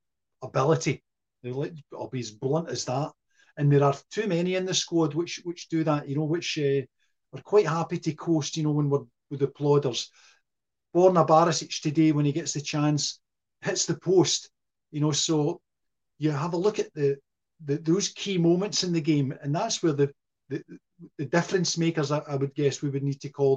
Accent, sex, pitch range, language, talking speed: British, male, 135-165 Hz, English, 200 wpm